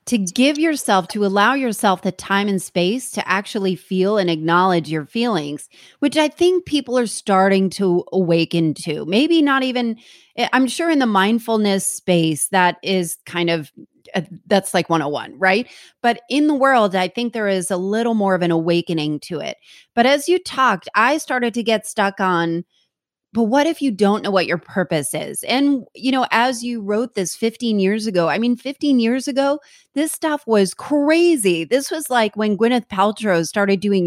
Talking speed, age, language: 185 wpm, 30-49, English